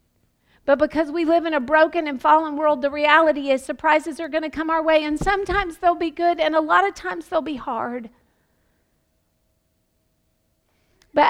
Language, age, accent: English, 40-59, American